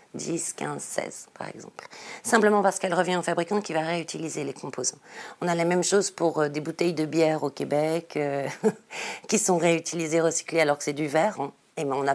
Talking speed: 210 wpm